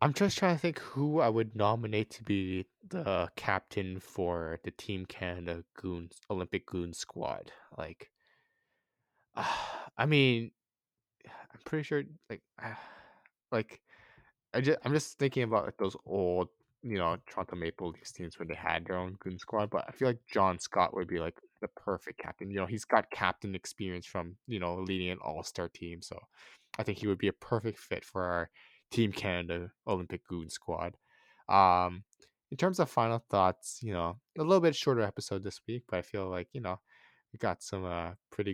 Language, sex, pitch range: English, male, 90-125 Hz